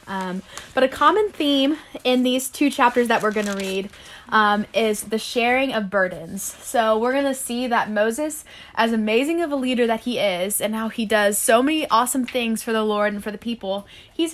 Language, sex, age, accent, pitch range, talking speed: English, female, 10-29, American, 200-250 Hz, 210 wpm